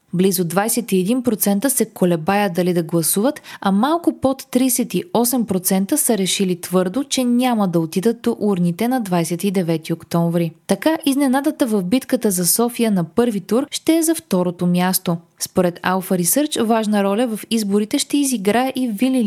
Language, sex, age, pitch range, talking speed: Bulgarian, female, 20-39, 185-250 Hz, 150 wpm